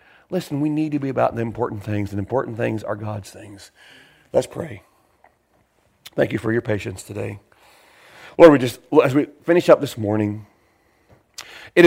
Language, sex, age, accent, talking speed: English, male, 40-59, American, 165 wpm